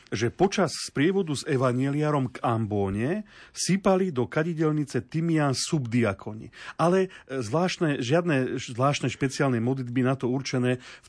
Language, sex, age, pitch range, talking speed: Slovak, male, 40-59, 125-160 Hz, 120 wpm